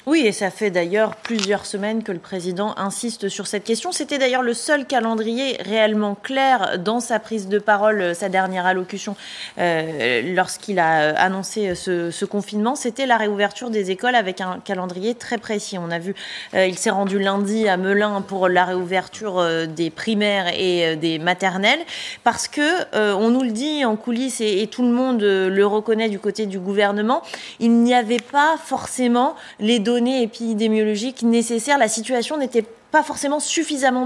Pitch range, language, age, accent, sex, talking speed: 200-245 Hz, French, 20-39, French, female, 175 wpm